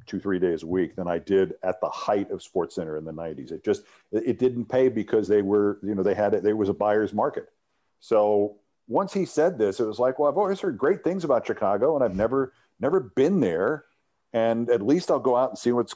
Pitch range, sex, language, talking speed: 95-120 Hz, male, English, 250 wpm